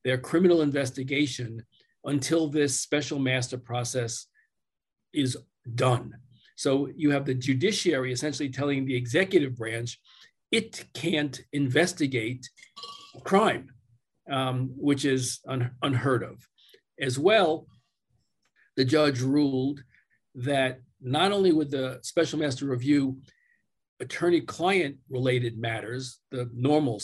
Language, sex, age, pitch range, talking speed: English, male, 50-69, 130-155 Hz, 105 wpm